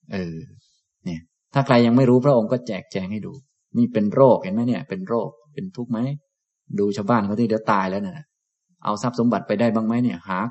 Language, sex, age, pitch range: Thai, male, 20-39, 105-150 Hz